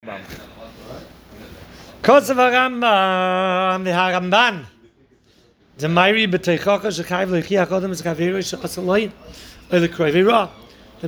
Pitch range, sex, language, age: 170-210 Hz, male, English, 40-59